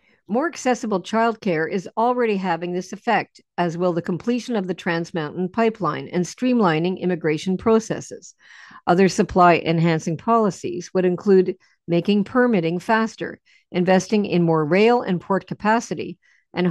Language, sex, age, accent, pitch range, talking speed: English, female, 50-69, American, 170-220 Hz, 135 wpm